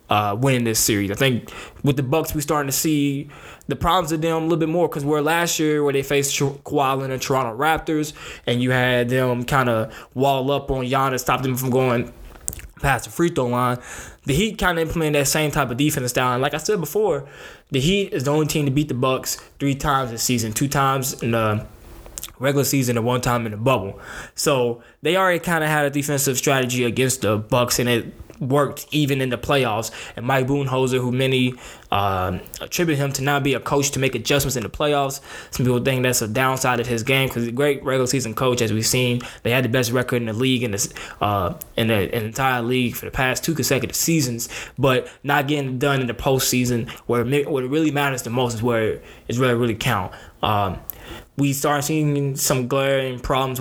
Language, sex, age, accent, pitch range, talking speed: English, male, 10-29, American, 120-145 Hz, 225 wpm